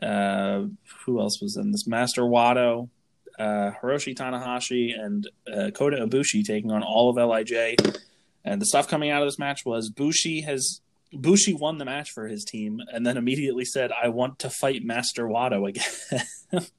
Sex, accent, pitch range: male, American, 120-170 Hz